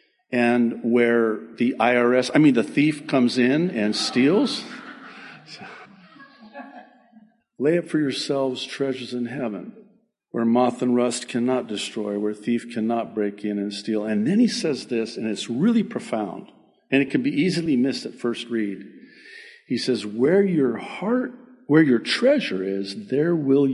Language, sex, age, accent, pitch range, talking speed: English, male, 50-69, American, 115-190 Hz, 155 wpm